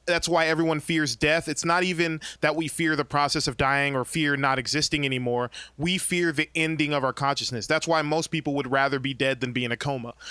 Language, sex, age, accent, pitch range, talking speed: English, male, 20-39, American, 140-170 Hz, 235 wpm